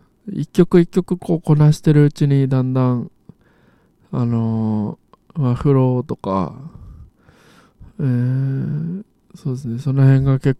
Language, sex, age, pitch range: Japanese, male, 20-39, 110-145 Hz